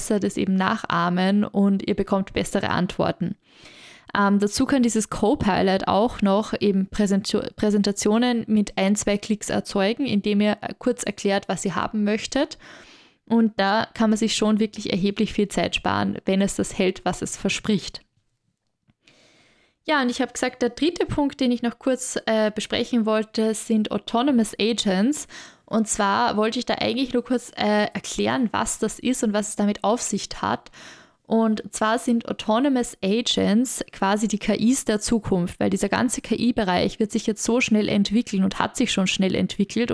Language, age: German, 20-39